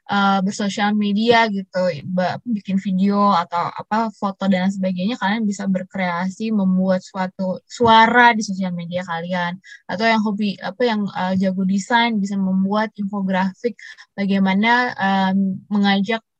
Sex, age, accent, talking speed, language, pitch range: female, 20-39, native, 130 wpm, Indonesian, 195-235 Hz